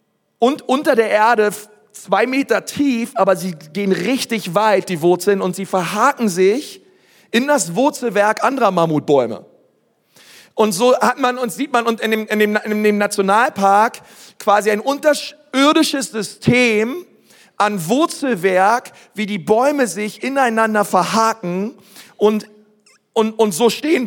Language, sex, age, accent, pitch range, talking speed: German, male, 40-59, German, 200-245 Hz, 135 wpm